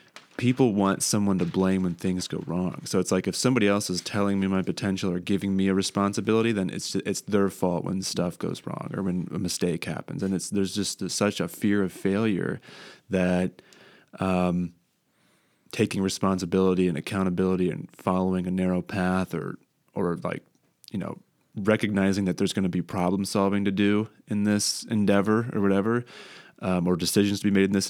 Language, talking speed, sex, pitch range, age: English, 185 wpm, male, 90-100 Hz, 20-39